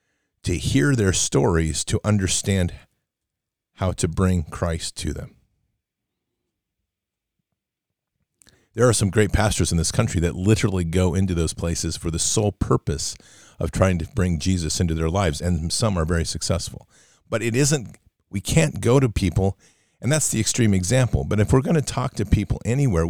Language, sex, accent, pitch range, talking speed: English, male, American, 90-115 Hz, 170 wpm